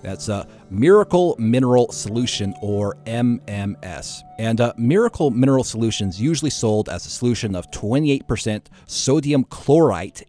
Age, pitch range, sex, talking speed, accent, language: 40-59, 100-130 Hz, male, 130 wpm, American, English